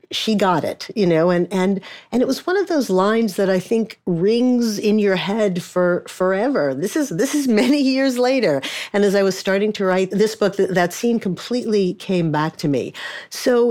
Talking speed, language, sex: 210 wpm, English, female